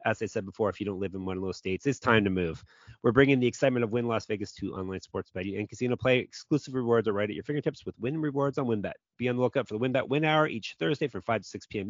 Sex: male